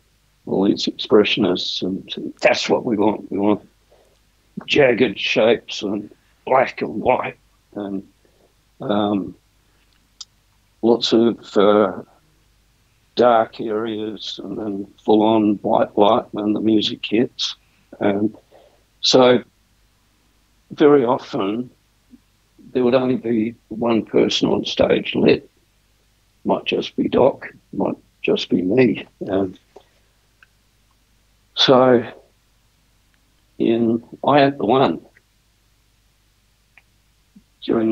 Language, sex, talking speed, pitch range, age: English, male, 100 wpm, 105-115 Hz, 60-79